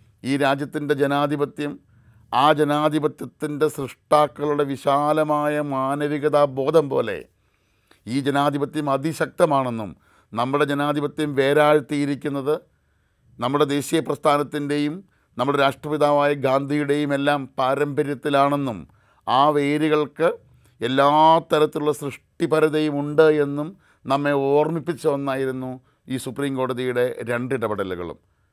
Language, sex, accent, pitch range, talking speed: Malayalam, male, native, 130-150 Hz, 75 wpm